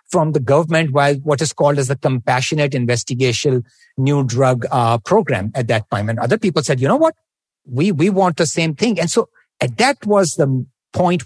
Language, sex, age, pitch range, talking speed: English, male, 60-79, 130-185 Hz, 205 wpm